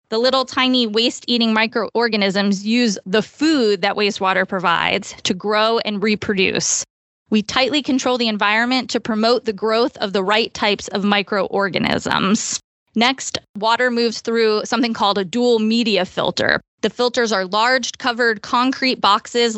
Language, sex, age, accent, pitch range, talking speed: English, female, 20-39, American, 210-245 Hz, 140 wpm